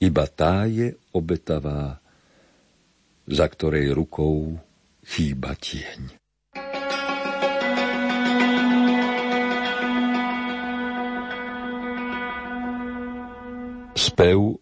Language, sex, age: Slovak, male, 50-69